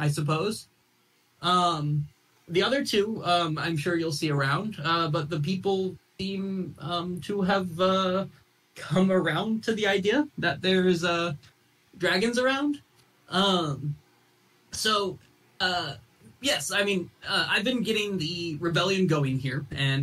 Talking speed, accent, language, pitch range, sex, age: 140 wpm, American, English, 135-180 Hz, male, 20-39